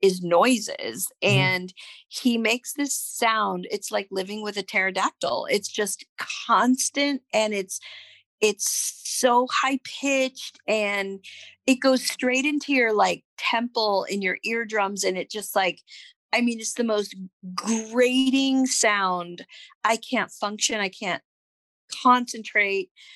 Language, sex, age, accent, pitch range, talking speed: English, female, 50-69, American, 195-265 Hz, 130 wpm